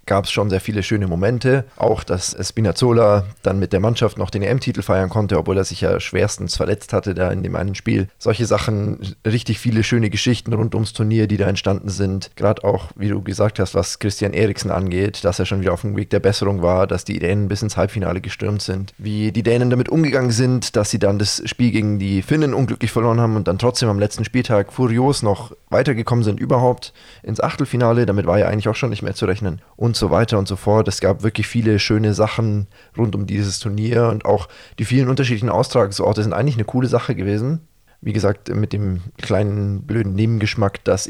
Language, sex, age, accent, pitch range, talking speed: German, male, 20-39, German, 100-115 Hz, 215 wpm